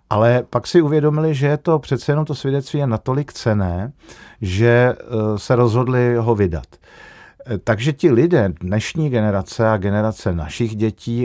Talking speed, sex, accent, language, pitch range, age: 150 wpm, male, native, Czech, 95-130 Hz, 50-69